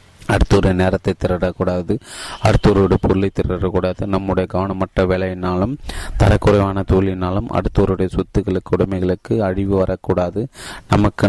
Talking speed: 95 wpm